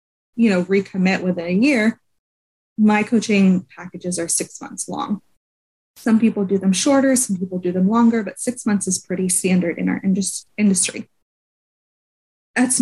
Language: English